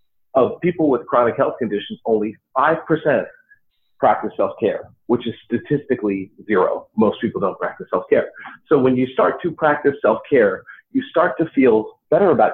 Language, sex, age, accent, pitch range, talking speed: English, male, 40-59, American, 110-190 Hz, 155 wpm